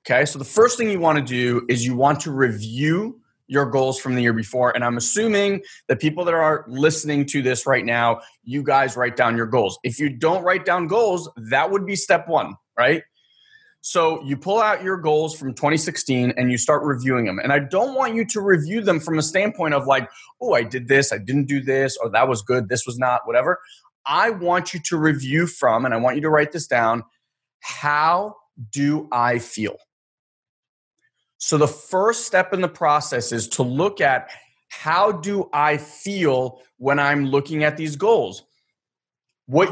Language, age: English, 20-39